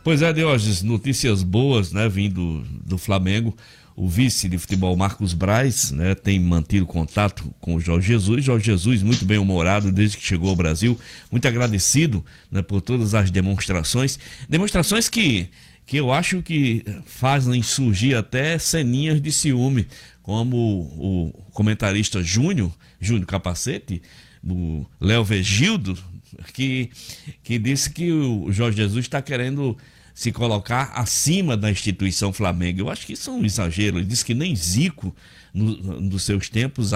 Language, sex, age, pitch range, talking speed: Portuguese, male, 60-79, 100-135 Hz, 150 wpm